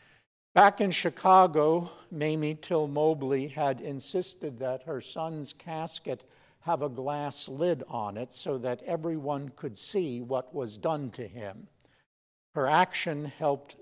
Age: 60-79